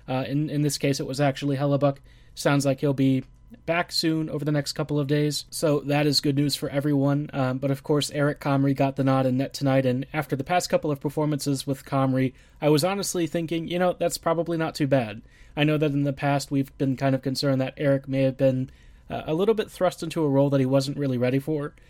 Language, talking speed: English, 245 wpm